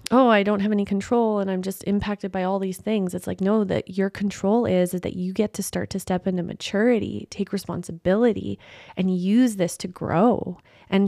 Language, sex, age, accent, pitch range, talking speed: English, female, 20-39, American, 180-210 Hz, 210 wpm